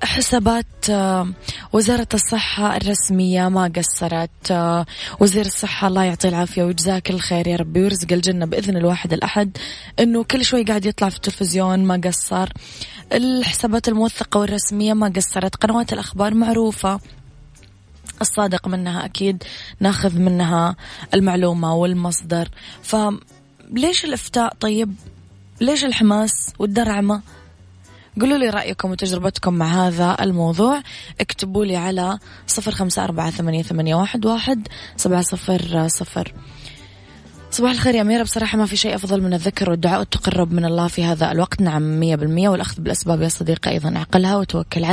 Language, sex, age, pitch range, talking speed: English, female, 20-39, 170-210 Hz, 120 wpm